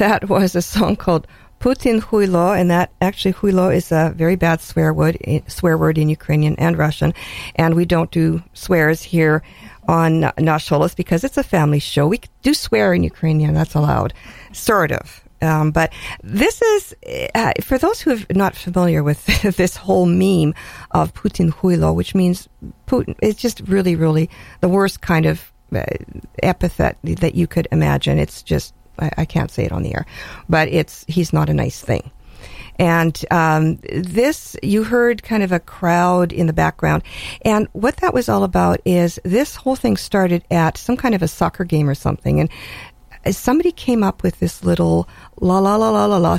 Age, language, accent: 50-69, English, American